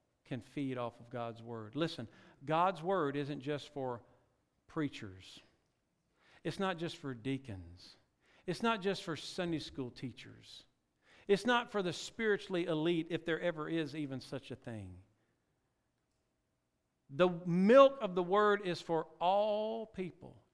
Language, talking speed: English, 140 wpm